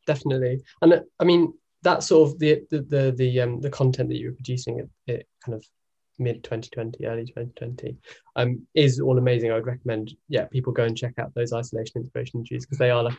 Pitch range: 115-135 Hz